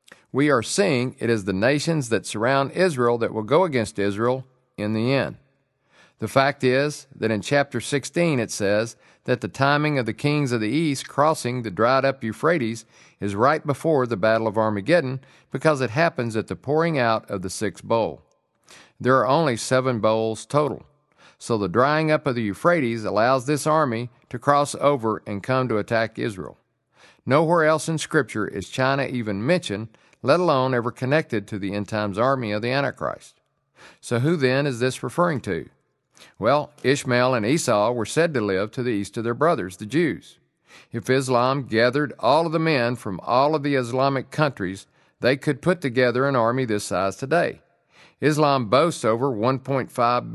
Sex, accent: male, American